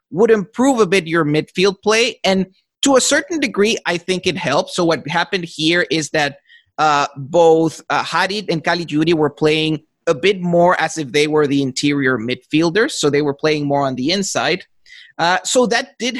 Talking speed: 195 wpm